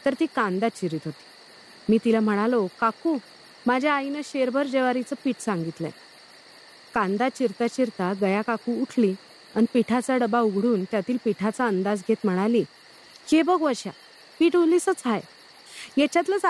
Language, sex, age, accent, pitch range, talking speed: Marathi, female, 30-49, native, 210-270 Hz, 135 wpm